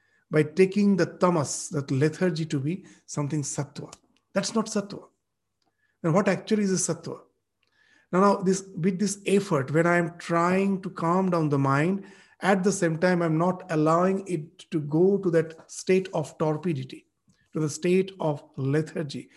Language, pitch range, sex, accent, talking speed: English, 150-190 Hz, male, Indian, 170 wpm